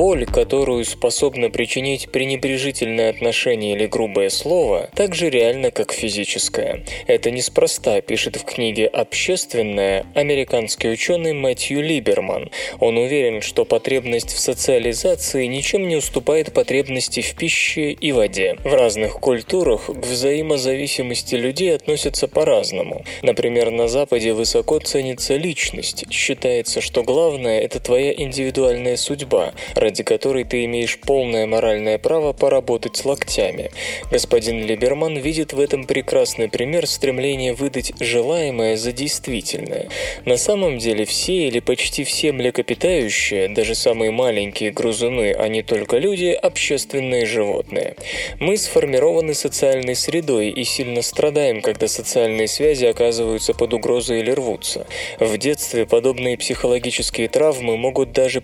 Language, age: Russian, 20-39